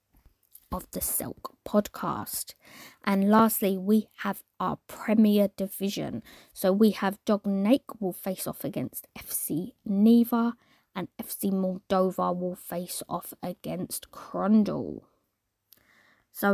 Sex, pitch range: female, 190-235 Hz